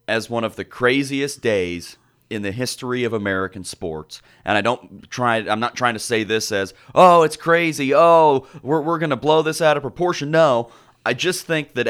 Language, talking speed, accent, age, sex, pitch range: English, 200 wpm, American, 30-49, male, 115-135 Hz